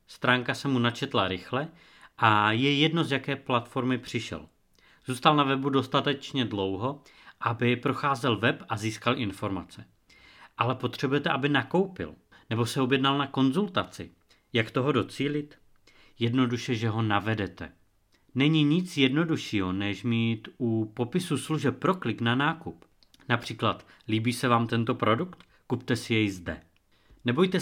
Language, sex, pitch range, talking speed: Czech, male, 110-140 Hz, 135 wpm